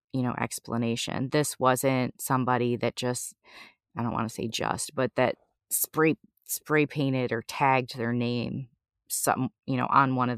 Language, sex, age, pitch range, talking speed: English, female, 30-49, 125-150 Hz, 170 wpm